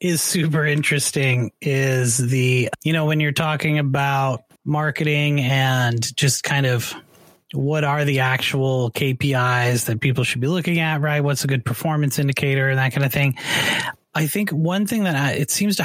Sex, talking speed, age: male, 175 wpm, 30-49